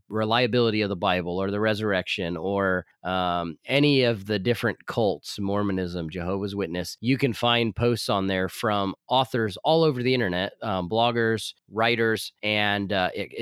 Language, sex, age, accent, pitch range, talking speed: English, male, 30-49, American, 95-120 Hz, 150 wpm